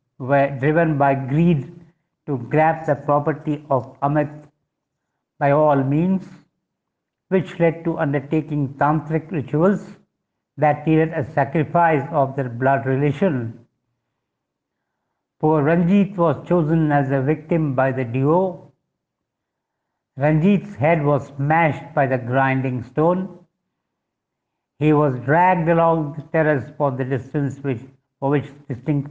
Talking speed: 120 wpm